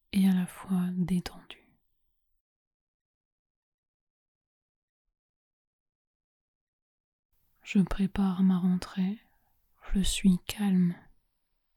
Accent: French